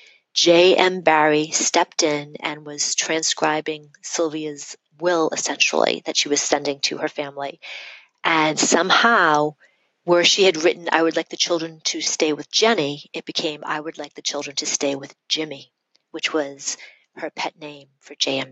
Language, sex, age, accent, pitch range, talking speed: English, female, 40-59, American, 150-165 Hz, 160 wpm